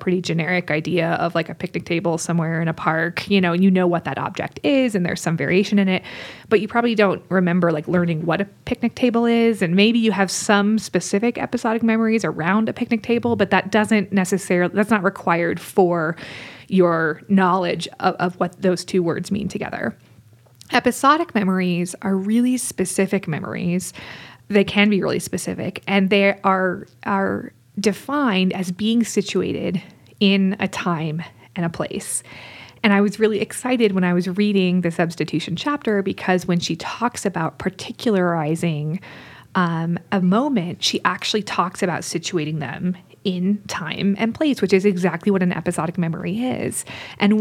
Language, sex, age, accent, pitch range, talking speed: English, female, 20-39, American, 175-210 Hz, 170 wpm